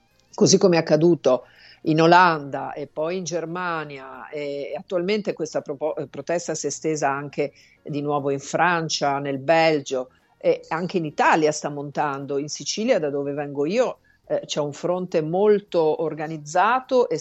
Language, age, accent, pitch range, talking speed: Italian, 50-69, native, 140-170 Hz, 150 wpm